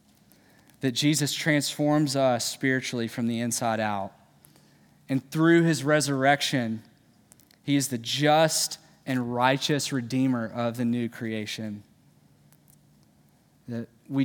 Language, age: English, 20-39